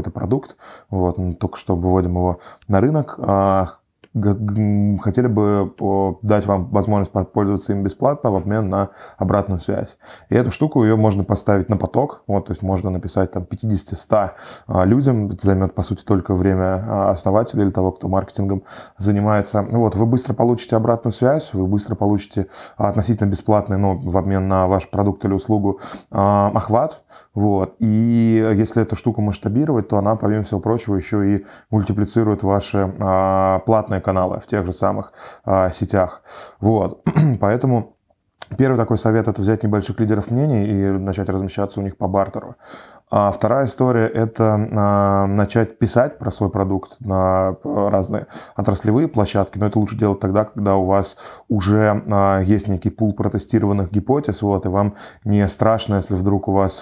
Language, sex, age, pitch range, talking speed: Russian, male, 20-39, 95-110 Hz, 155 wpm